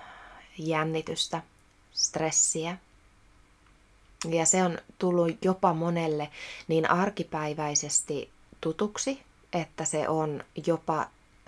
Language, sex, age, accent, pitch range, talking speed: Finnish, female, 20-39, native, 155-180 Hz, 80 wpm